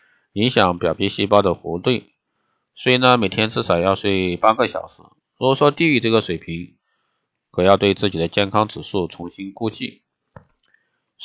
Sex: male